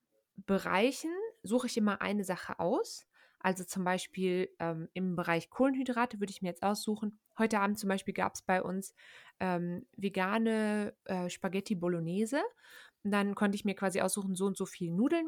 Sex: female